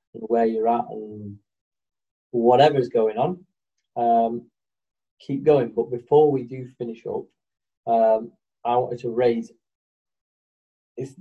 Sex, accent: male, British